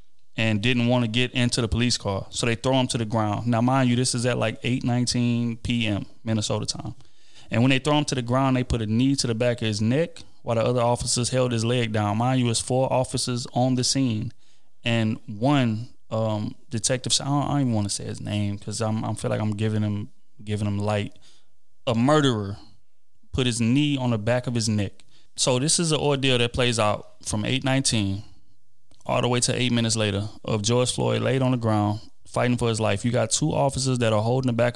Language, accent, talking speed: English, American, 230 wpm